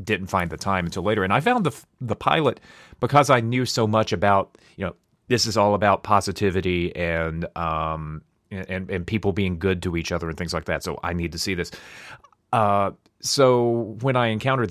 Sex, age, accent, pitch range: male, 30-49, American, 95-115 Hz